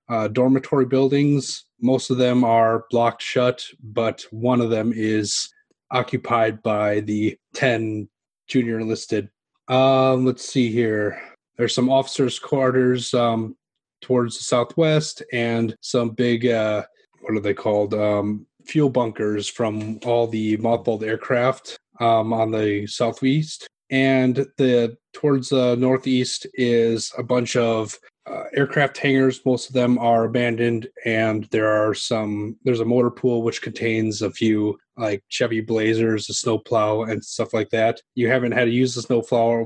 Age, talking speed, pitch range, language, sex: 30-49, 150 wpm, 110-125 Hz, English, male